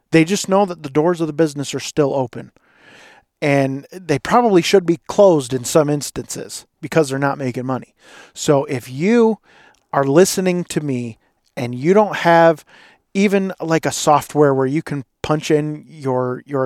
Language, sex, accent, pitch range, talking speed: English, male, American, 135-170 Hz, 175 wpm